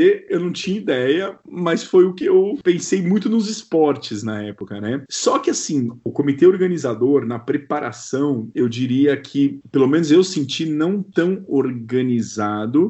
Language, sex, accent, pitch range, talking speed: Portuguese, male, Brazilian, 135-180 Hz, 160 wpm